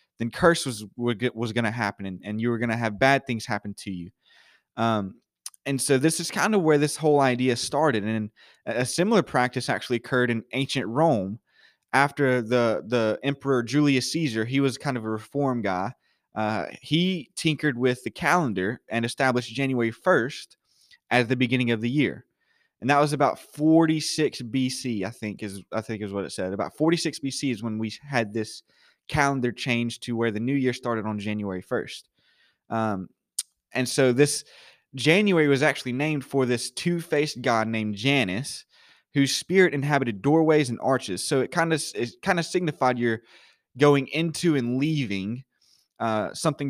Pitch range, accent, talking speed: 115-145 Hz, American, 180 wpm